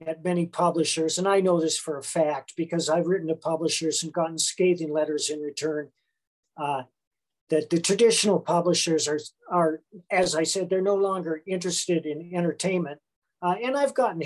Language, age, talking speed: English, 50-69, 175 wpm